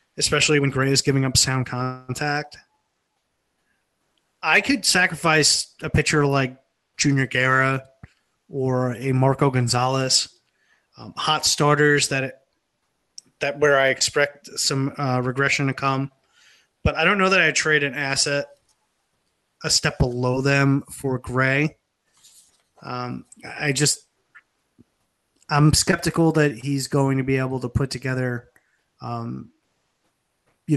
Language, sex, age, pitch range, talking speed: English, male, 20-39, 125-145 Hz, 125 wpm